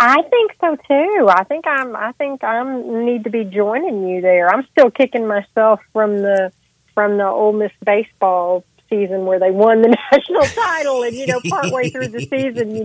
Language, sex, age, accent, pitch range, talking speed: English, female, 40-59, American, 190-220 Hz, 195 wpm